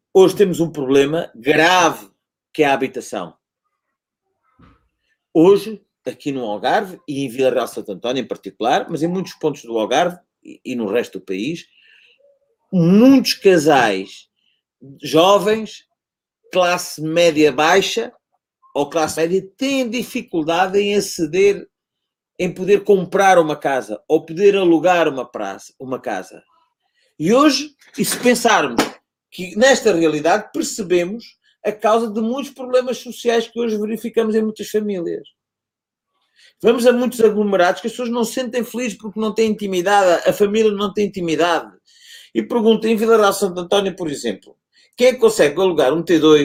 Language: Portuguese